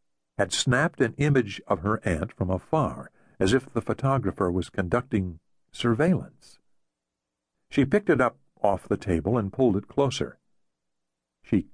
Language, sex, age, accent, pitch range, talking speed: English, male, 60-79, American, 85-110 Hz, 145 wpm